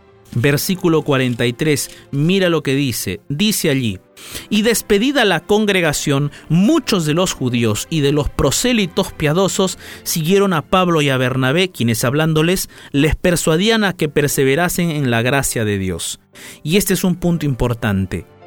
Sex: male